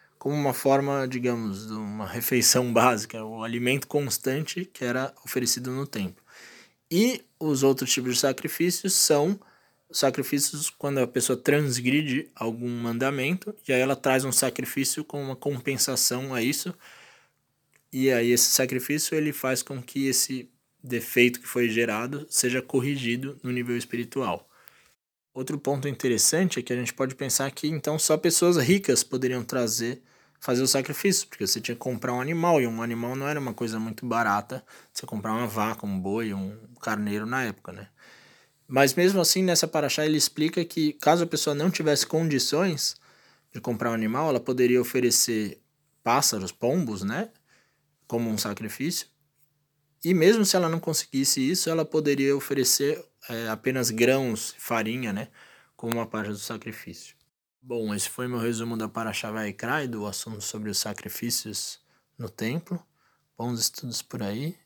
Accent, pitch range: Brazilian, 115-150 Hz